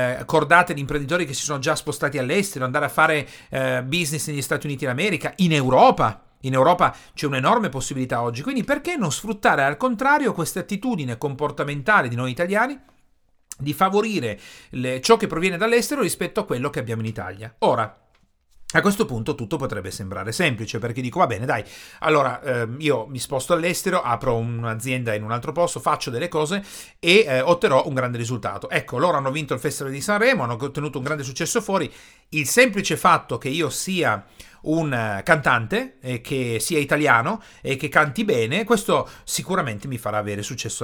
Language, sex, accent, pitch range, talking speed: Italian, male, native, 130-175 Hz, 175 wpm